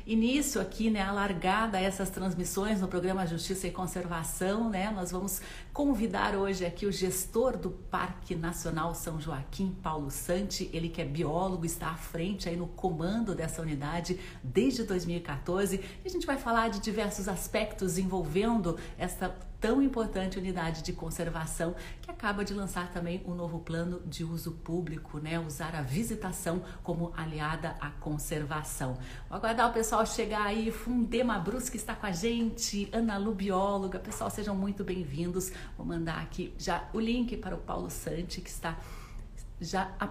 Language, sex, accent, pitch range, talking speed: Portuguese, female, Brazilian, 165-205 Hz, 160 wpm